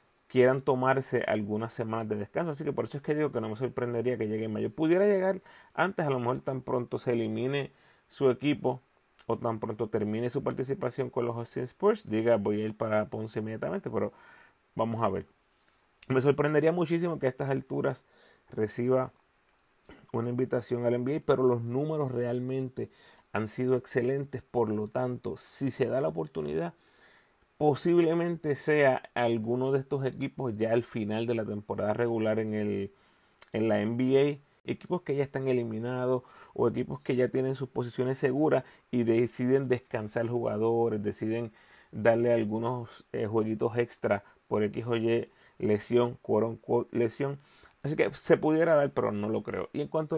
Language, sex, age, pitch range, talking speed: Spanish, male, 30-49, 115-135 Hz, 170 wpm